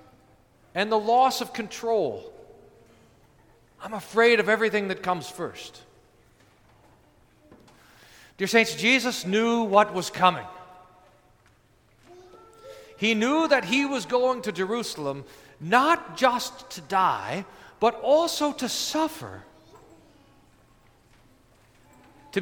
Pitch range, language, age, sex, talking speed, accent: 190-255 Hz, English, 40-59, male, 95 wpm, American